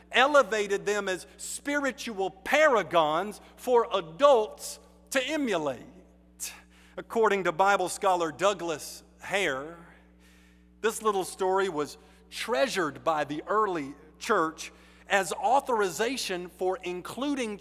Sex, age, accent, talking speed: male, 50-69, American, 95 wpm